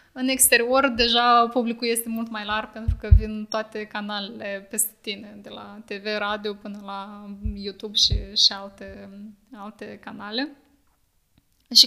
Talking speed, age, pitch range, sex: 140 wpm, 20-39, 185-215 Hz, female